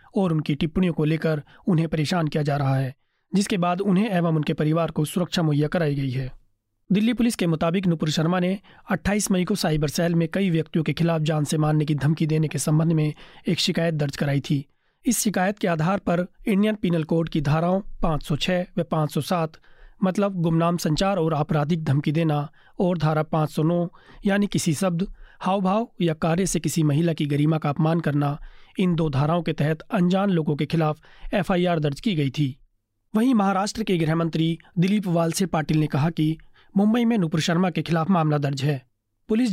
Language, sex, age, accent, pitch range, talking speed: Hindi, male, 30-49, native, 155-185 Hz, 190 wpm